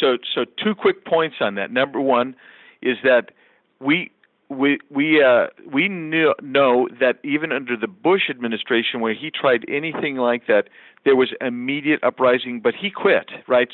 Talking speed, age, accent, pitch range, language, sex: 165 wpm, 50-69, American, 130-190 Hz, English, male